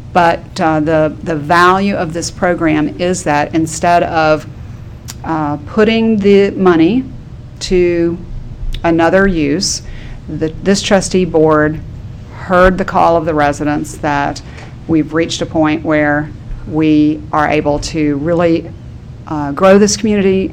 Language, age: English, 50-69